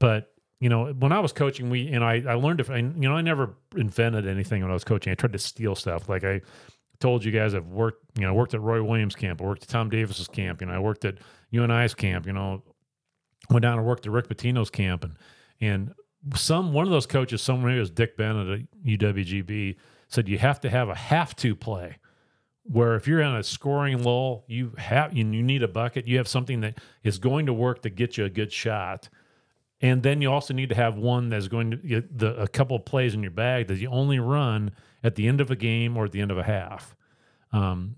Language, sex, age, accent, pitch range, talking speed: English, male, 40-59, American, 100-125 Hz, 245 wpm